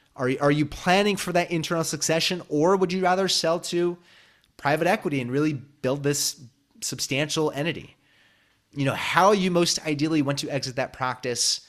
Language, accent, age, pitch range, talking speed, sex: English, American, 30-49, 130-170 Hz, 165 wpm, male